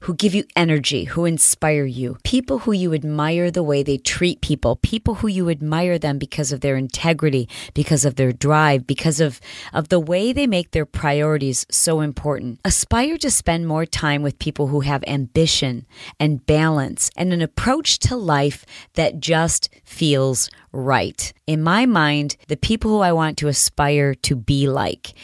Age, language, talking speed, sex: 40-59, English, 180 wpm, female